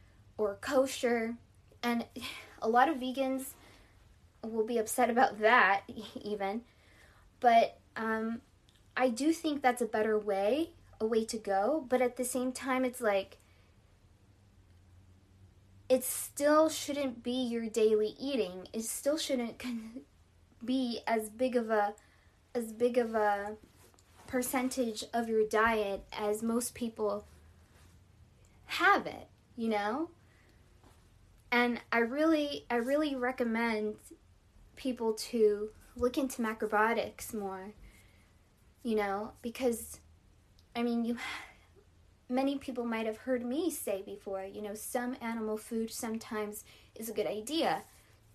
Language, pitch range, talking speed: English, 200-245 Hz, 120 wpm